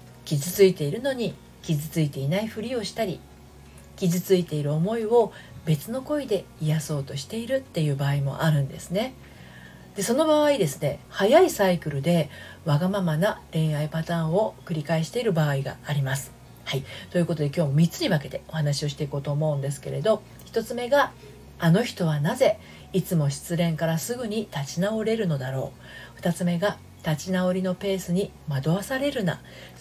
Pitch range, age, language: 145-205 Hz, 40-59, Japanese